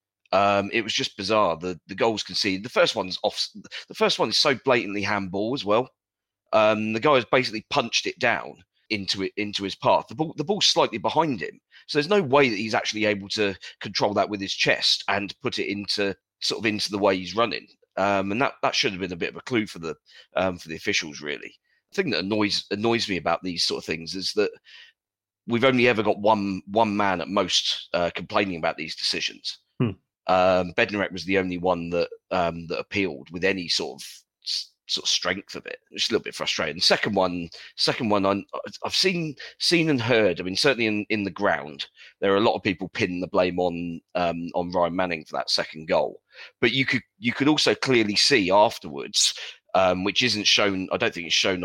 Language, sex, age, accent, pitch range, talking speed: English, male, 30-49, British, 90-115 Hz, 225 wpm